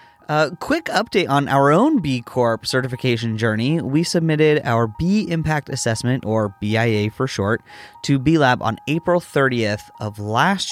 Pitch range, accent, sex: 105-145 Hz, American, male